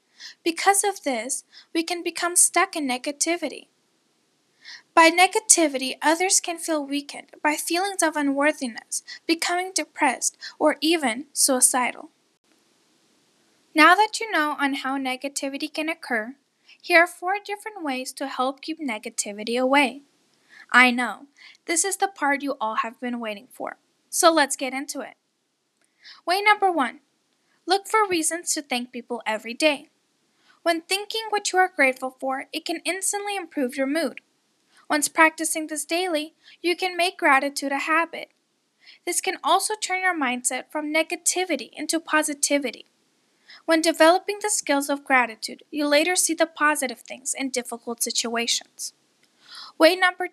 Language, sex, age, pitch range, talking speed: English, female, 10-29, 270-350 Hz, 145 wpm